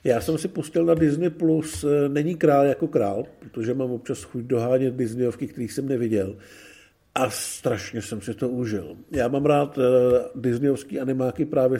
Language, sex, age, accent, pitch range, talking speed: Czech, male, 50-69, native, 115-140 Hz, 165 wpm